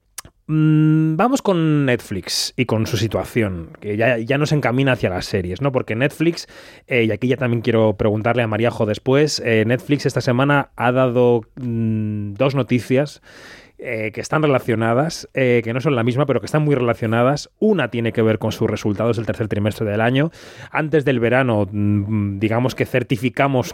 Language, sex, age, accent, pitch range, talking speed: Spanish, male, 30-49, Spanish, 110-145 Hz, 175 wpm